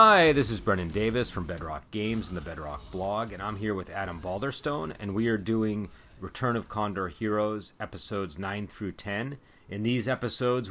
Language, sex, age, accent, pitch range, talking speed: English, male, 30-49, American, 90-110 Hz, 185 wpm